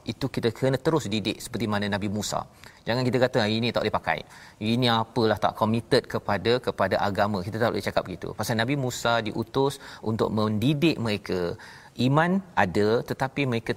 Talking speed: 175 wpm